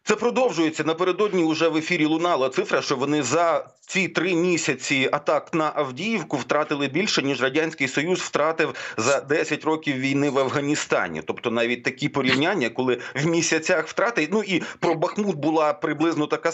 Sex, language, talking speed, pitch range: male, Ukrainian, 160 wpm, 150-170 Hz